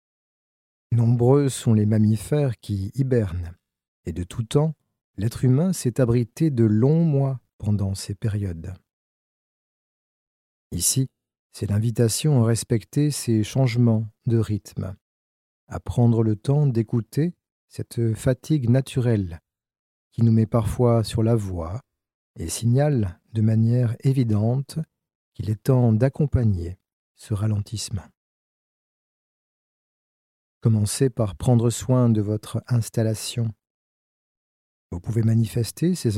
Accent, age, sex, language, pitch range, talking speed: French, 40-59, male, French, 100-125 Hz, 110 wpm